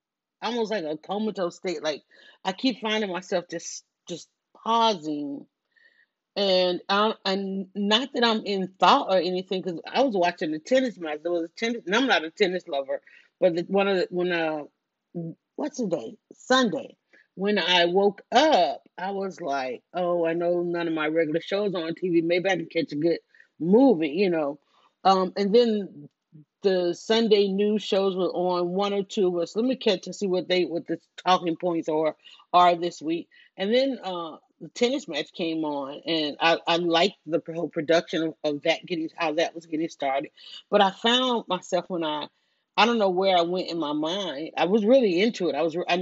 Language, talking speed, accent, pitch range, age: English, 195 wpm, American, 165-210 Hz, 40-59